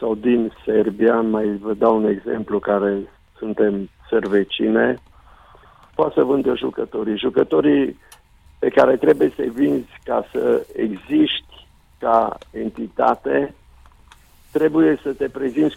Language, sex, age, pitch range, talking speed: Romanian, male, 50-69, 105-140 Hz, 115 wpm